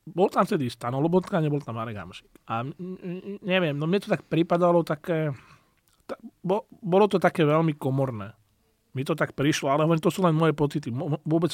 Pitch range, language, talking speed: 130-165 Hz, Slovak, 175 wpm